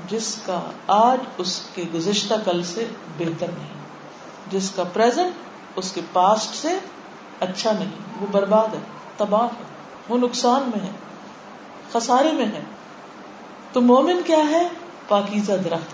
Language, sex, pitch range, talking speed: Urdu, female, 185-235 Hz, 85 wpm